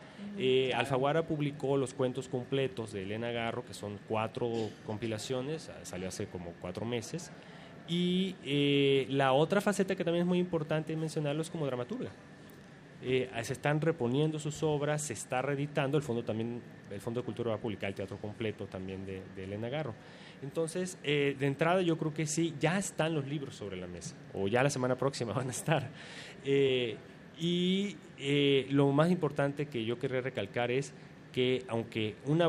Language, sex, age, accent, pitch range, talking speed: Spanish, male, 30-49, Mexican, 115-155 Hz, 175 wpm